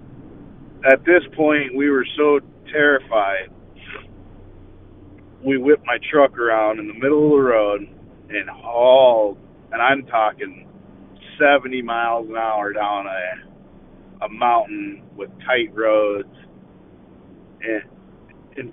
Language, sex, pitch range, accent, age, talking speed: English, male, 115-150 Hz, American, 40-59, 115 wpm